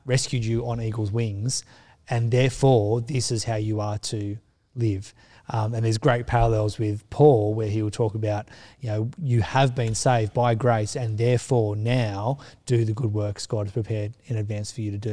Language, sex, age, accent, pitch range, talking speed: English, male, 20-39, Australian, 110-130 Hz, 200 wpm